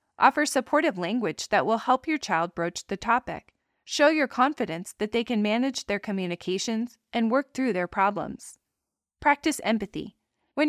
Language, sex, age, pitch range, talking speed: English, female, 20-39, 190-250 Hz, 155 wpm